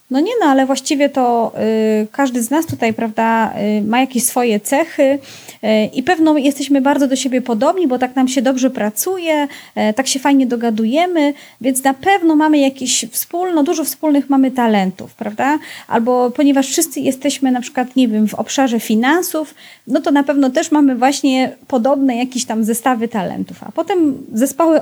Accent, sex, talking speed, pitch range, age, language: native, female, 175 wpm, 225-285 Hz, 30-49, Polish